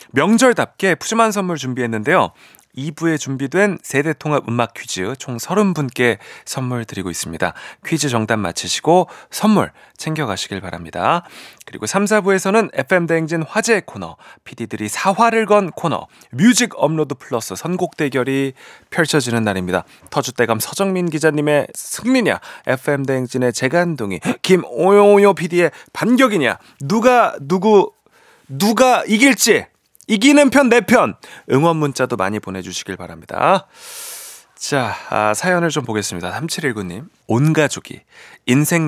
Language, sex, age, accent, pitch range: Korean, male, 30-49, native, 115-185 Hz